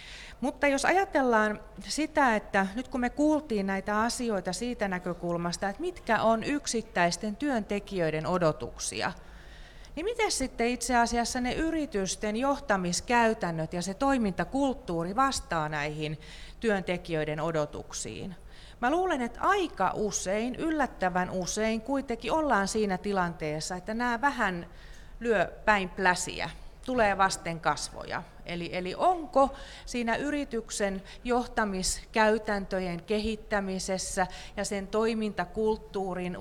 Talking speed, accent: 105 wpm, native